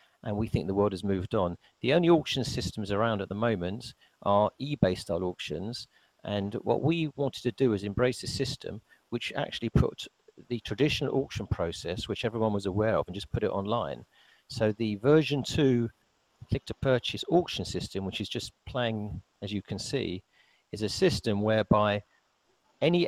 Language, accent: English, British